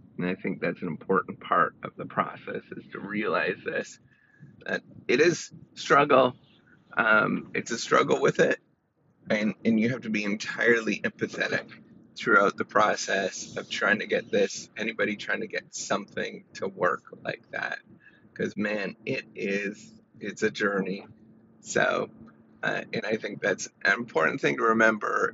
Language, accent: English, American